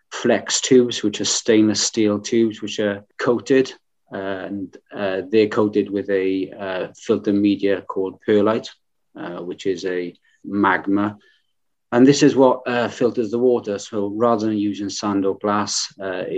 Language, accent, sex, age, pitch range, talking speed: English, British, male, 30-49, 95-105 Hz, 160 wpm